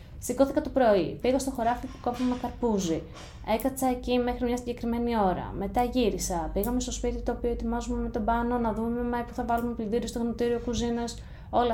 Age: 20-39